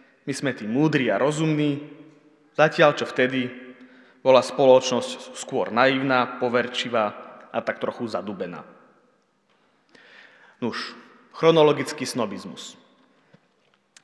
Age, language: 30-49, Slovak